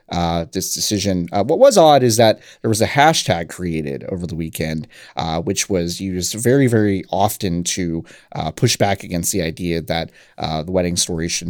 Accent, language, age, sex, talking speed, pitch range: American, English, 30-49, male, 195 wpm, 85-115 Hz